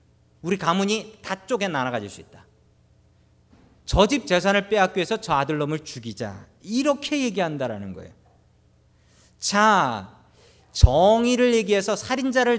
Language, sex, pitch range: Korean, male, 130-205 Hz